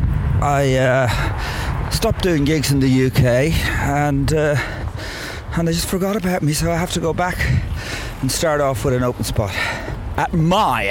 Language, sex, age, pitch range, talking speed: English, male, 40-59, 100-135 Hz, 170 wpm